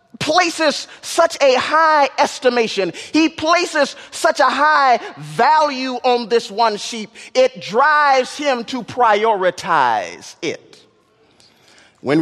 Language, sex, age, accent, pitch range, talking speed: English, male, 30-49, American, 215-290 Hz, 110 wpm